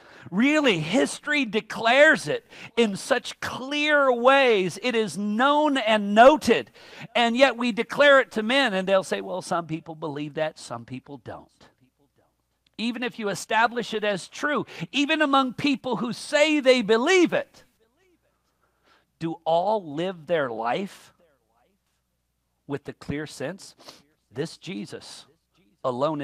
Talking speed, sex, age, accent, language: 135 wpm, male, 50-69, American, English